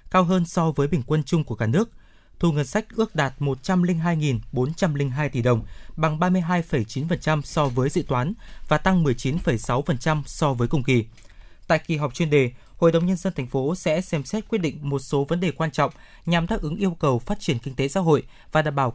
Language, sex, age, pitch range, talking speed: Vietnamese, male, 20-39, 130-170 Hz, 210 wpm